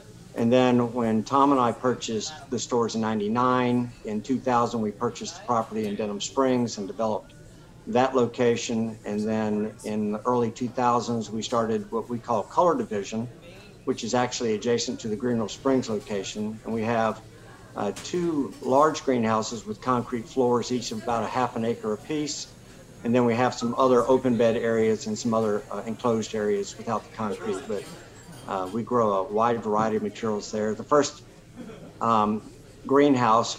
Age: 50-69